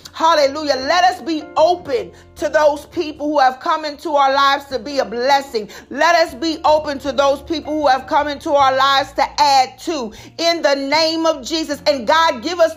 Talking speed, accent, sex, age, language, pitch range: 200 wpm, American, female, 40-59, English, 275-330 Hz